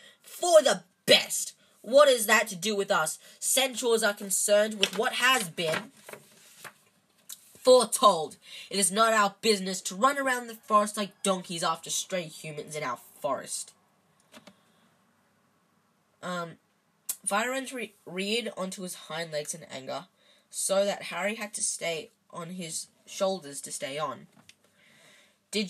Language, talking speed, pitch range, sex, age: English, 140 wpm, 185-220 Hz, female, 10-29